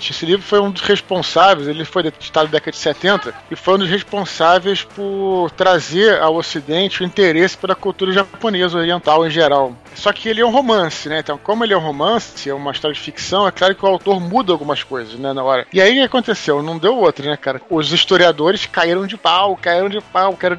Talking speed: 225 wpm